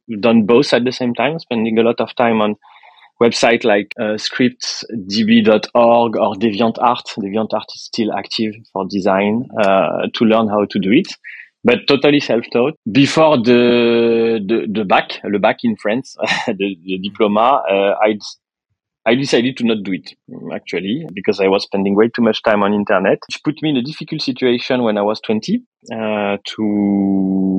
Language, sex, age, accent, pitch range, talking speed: English, male, 30-49, French, 105-130 Hz, 170 wpm